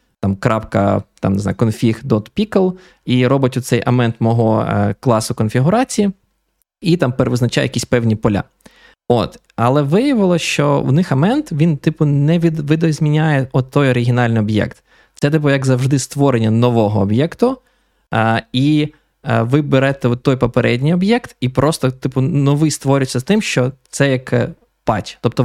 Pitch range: 115-145 Hz